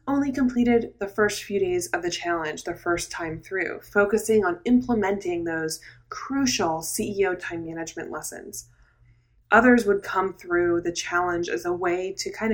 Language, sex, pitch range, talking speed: English, female, 175-235 Hz, 160 wpm